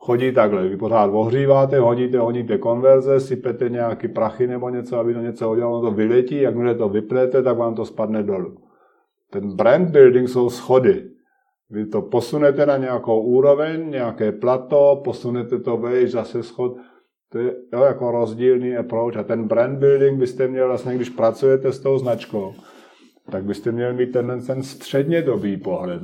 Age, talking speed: 50-69, 165 wpm